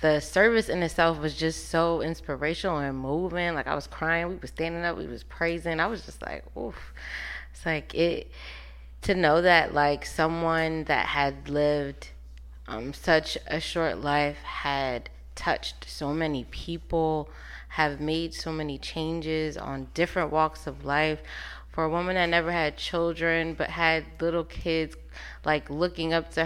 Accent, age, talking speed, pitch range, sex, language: American, 20-39, 165 wpm, 130-165 Hz, female, English